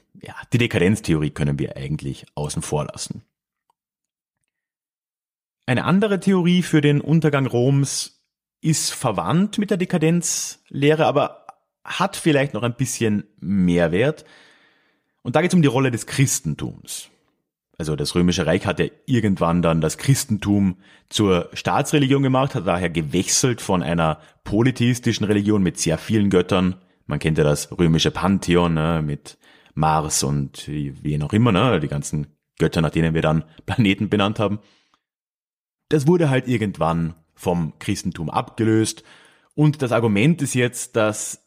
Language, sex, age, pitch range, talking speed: German, male, 30-49, 90-150 Hz, 140 wpm